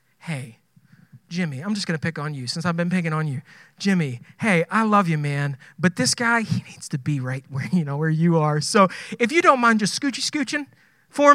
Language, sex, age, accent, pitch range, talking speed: English, male, 30-49, American, 160-230 Hz, 225 wpm